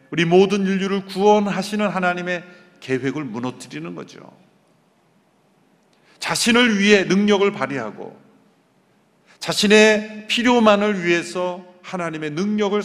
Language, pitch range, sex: Korean, 135-205 Hz, male